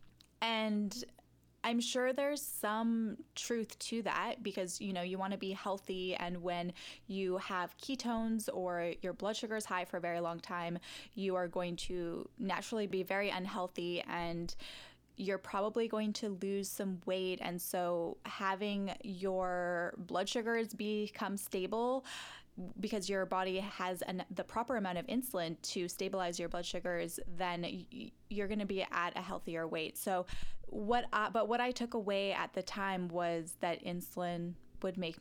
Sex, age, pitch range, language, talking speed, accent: female, 10-29, 175-220 Hz, English, 160 wpm, American